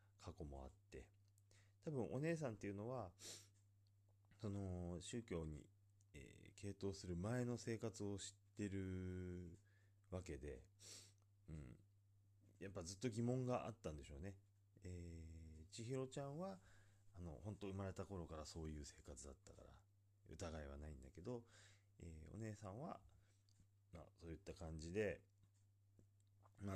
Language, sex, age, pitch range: Japanese, male, 30-49, 85-105 Hz